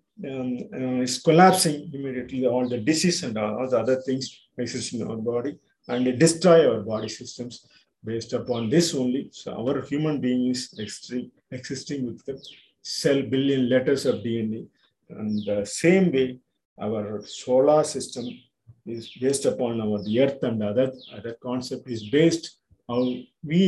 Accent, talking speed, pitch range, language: native, 155 wpm, 125-145 Hz, Tamil